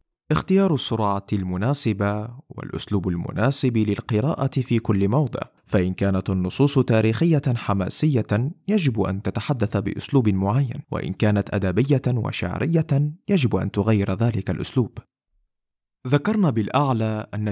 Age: 30-49